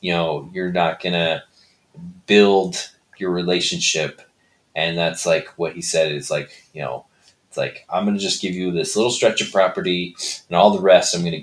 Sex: male